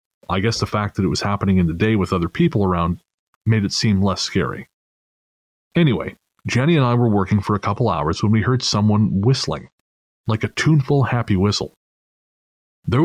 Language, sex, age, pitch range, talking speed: English, male, 30-49, 95-115 Hz, 190 wpm